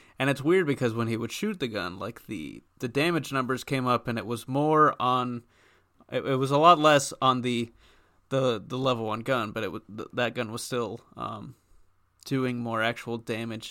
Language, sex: English, male